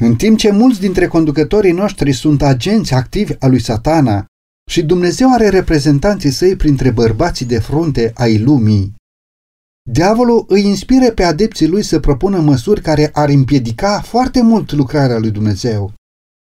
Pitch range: 125-190 Hz